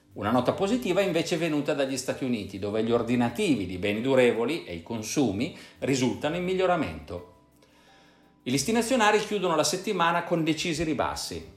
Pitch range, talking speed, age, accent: 100-155 Hz, 160 wpm, 50-69, native